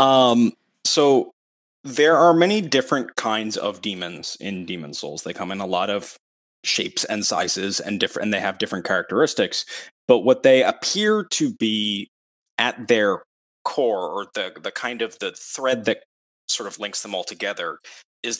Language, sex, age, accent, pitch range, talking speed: English, male, 20-39, American, 95-120 Hz, 170 wpm